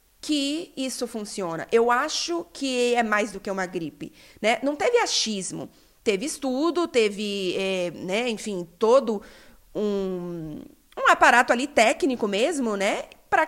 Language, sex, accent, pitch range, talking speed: Portuguese, female, Brazilian, 205-270 Hz, 140 wpm